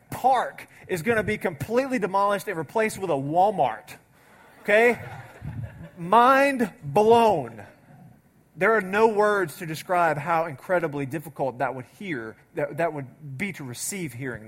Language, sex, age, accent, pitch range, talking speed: English, male, 30-49, American, 130-175 Hz, 140 wpm